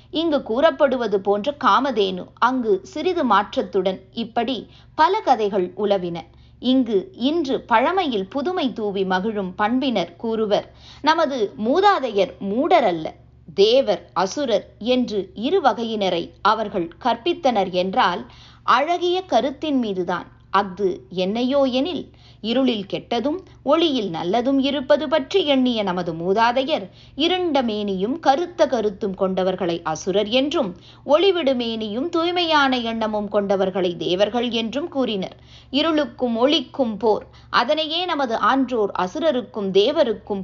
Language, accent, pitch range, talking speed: Tamil, native, 195-290 Hz, 100 wpm